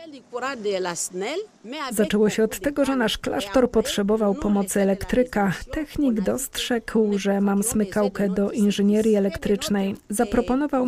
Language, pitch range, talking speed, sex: Polish, 195-230 Hz, 105 wpm, female